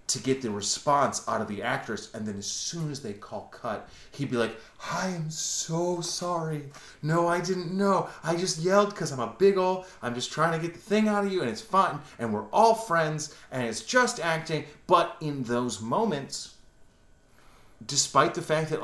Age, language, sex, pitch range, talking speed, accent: 30-49, English, male, 115-170 Hz, 205 wpm, American